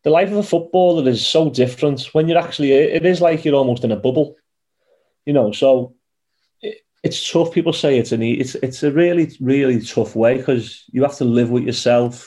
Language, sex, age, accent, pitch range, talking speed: English, male, 30-49, British, 115-135 Hz, 205 wpm